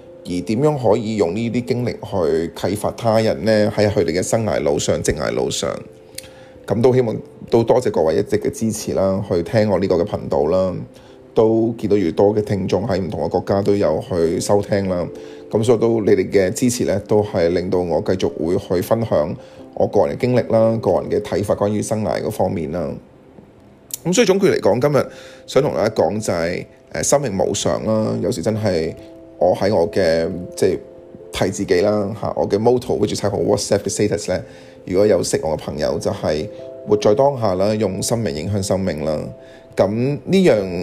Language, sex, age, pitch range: Chinese, male, 20-39, 95-115 Hz